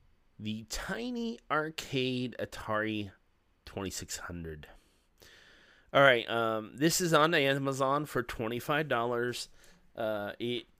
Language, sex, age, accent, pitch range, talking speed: English, male, 30-49, American, 95-135 Hz, 80 wpm